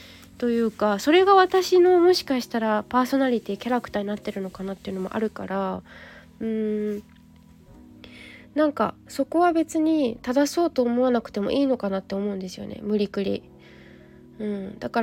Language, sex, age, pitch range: Japanese, female, 20-39, 210-290 Hz